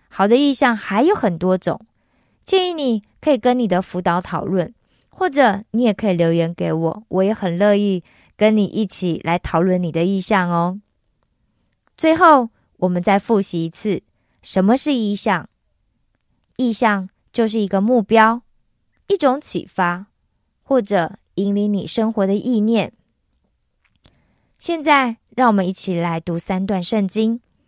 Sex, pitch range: female, 185-240 Hz